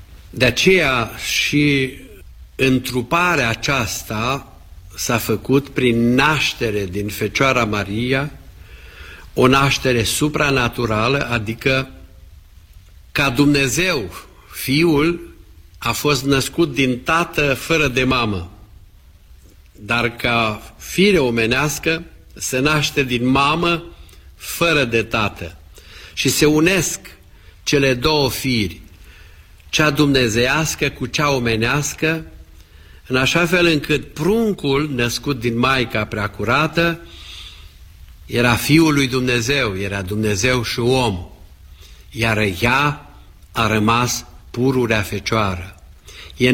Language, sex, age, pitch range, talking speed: Romanian, male, 50-69, 95-140 Hz, 95 wpm